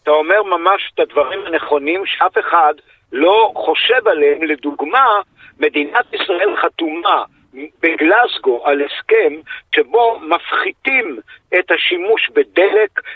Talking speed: 105 wpm